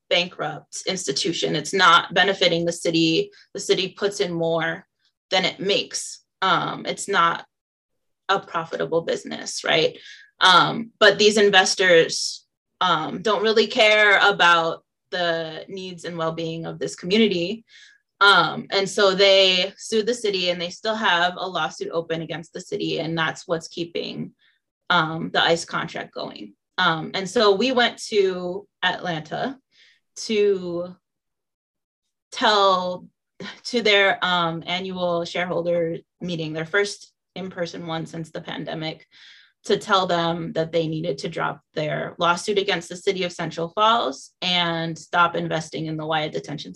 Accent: American